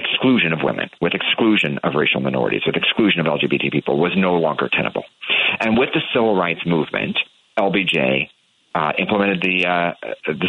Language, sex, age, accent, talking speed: English, male, 40-59, American, 160 wpm